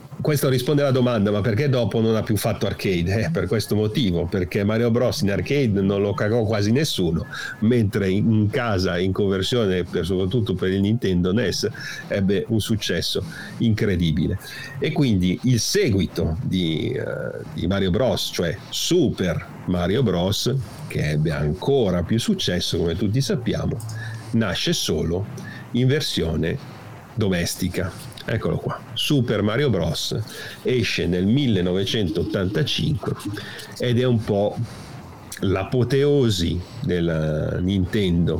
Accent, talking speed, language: native, 125 wpm, Italian